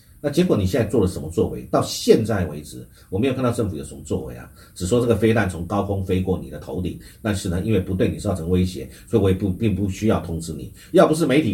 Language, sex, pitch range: Chinese, male, 85-110 Hz